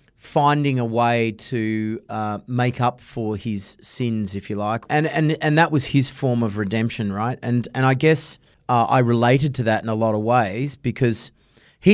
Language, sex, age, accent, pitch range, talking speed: English, male, 30-49, Australian, 110-130 Hz, 195 wpm